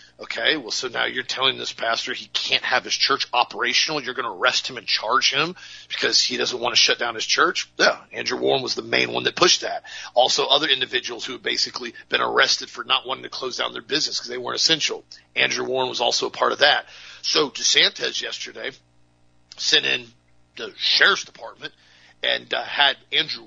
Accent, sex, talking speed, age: American, male, 205 wpm, 40-59